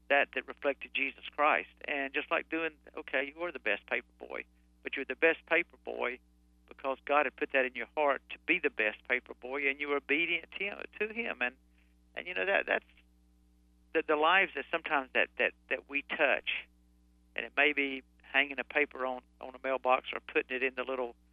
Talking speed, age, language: 215 wpm, 50-69, English